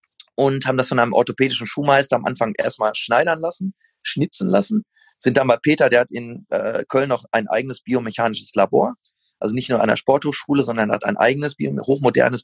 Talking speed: 190 wpm